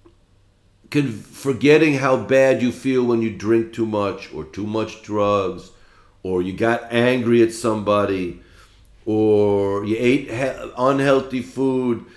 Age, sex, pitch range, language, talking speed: 50-69, male, 105-145 Hz, English, 125 wpm